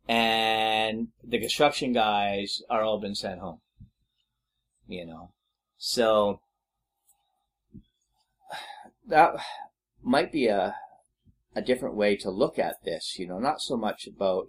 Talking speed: 120 wpm